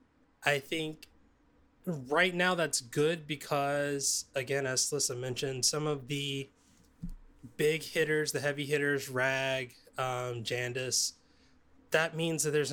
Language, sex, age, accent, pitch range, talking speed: English, male, 20-39, American, 135-155 Hz, 125 wpm